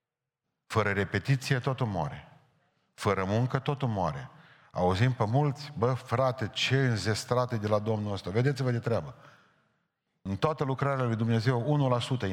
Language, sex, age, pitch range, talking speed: Romanian, male, 40-59, 110-135 Hz, 135 wpm